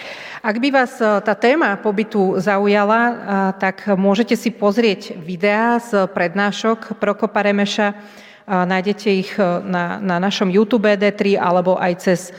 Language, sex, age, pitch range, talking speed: Slovak, female, 40-59, 185-225 Hz, 125 wpm